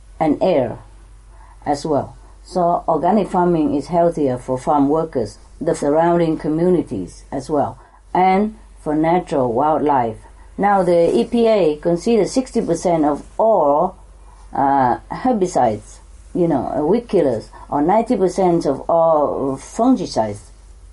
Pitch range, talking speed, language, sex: 145-210 Hz, 110 wpm, English, female